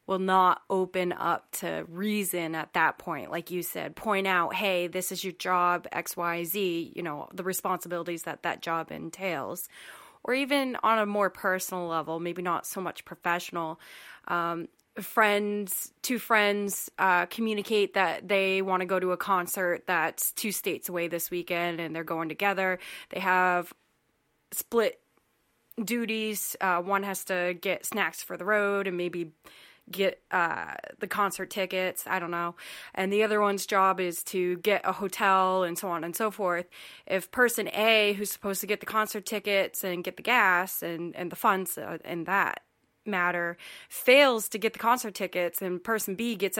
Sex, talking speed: female, 175 wpm